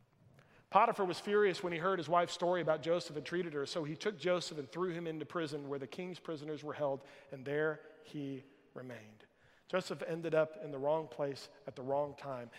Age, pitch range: 40-59, 145-190 Hz